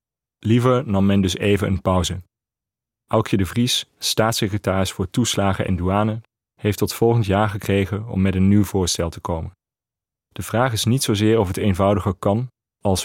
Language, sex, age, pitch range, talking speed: Dutch, male, 30-49, 95-110 Hz, 170 wpm